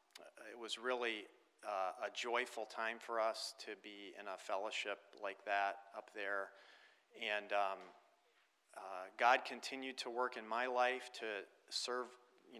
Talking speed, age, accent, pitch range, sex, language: 150 wpm, 40-59, American, 100-120 Hz, male, English